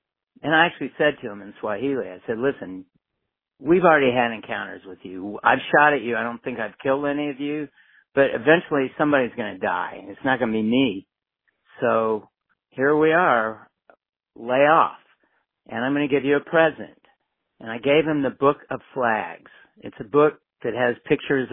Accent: American